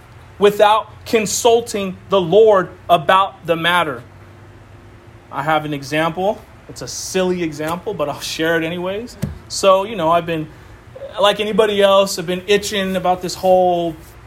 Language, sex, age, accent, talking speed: English, male, 30-49, American, 145 wpm